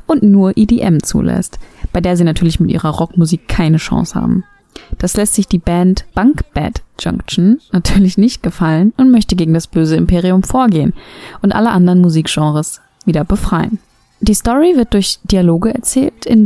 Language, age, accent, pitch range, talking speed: German, 20-39, German, 180-230 Hz, 165 wpm